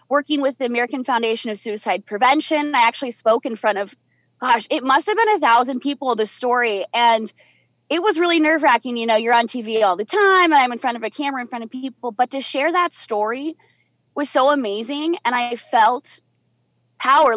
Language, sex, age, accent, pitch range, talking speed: English, female, 20-39, American, 235-310 Hz, 210 wpm